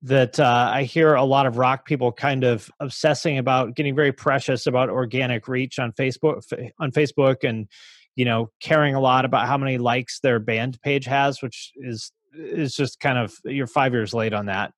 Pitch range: 120-140 Hz